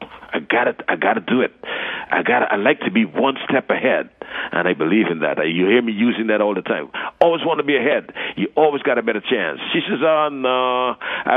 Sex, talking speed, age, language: male, 245 wpm, 60-79, English